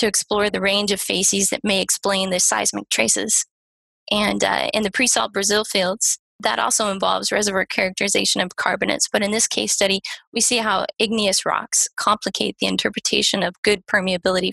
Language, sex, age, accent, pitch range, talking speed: English, female, 20-39, American, 195-220 Hz, 175 wpm